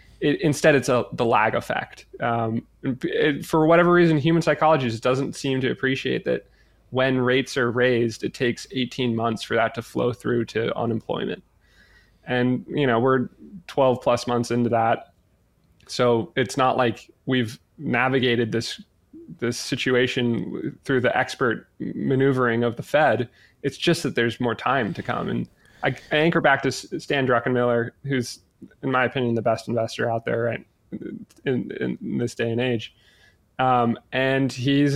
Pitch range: 120-150 Hz